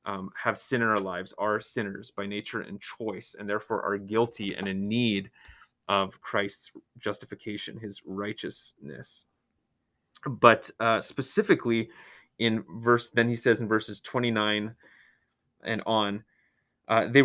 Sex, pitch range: male, 105-150 Hz